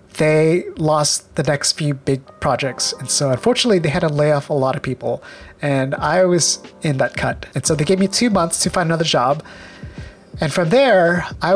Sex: male